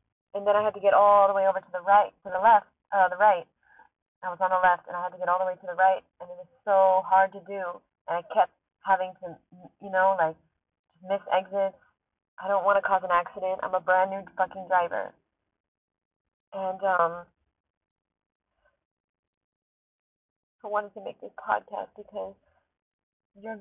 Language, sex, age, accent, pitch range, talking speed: English, female, 20-39, American, 180-210 Hz, 190 wpm